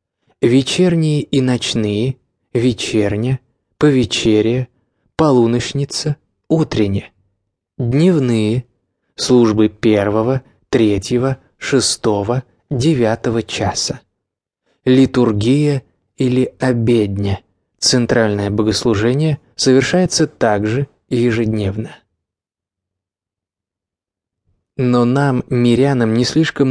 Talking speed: 60 wpm